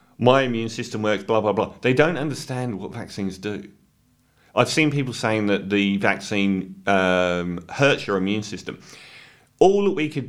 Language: English